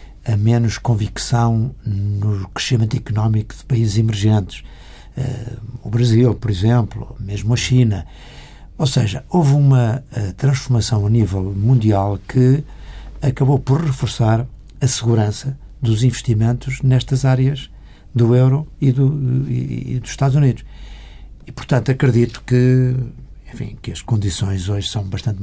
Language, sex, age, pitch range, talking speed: Portuguese, male, 60-79, 105-130 Hz, 125 wpm